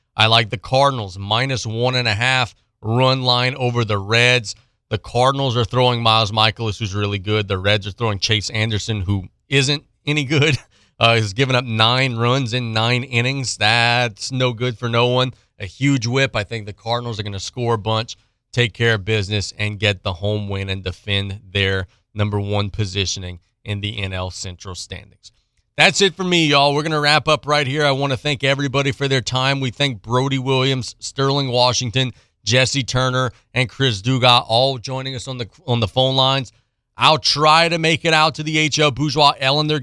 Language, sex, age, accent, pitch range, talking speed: English, male, 30-49, American, 110-135 Hz, 195 wpm